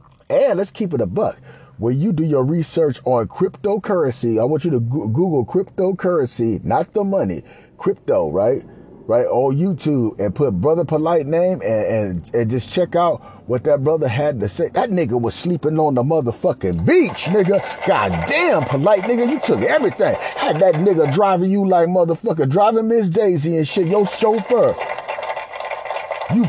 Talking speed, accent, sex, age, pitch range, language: 170 wpm, American, male, 30-49, 155-260 Hz, English